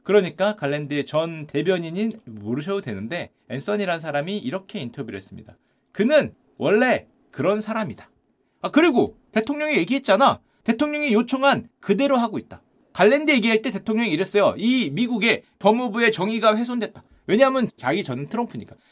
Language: Korean